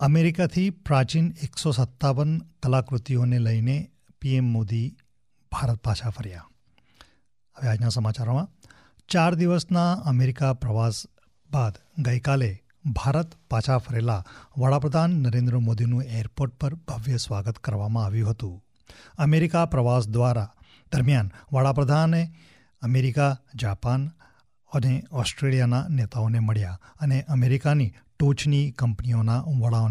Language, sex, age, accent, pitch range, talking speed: English, male, 40-59, Indian, 115-145 Hz, 90 wpm